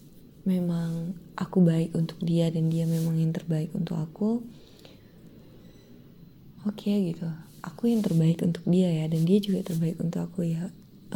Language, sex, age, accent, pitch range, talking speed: Indonesian, female, 20-39, native, 160-180 Hz, 160 wpm